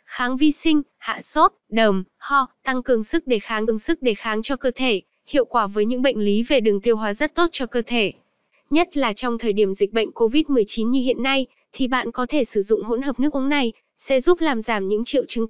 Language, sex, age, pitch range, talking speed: Vietnamese, female, 20-39, 220-270 Hz, 245 wpm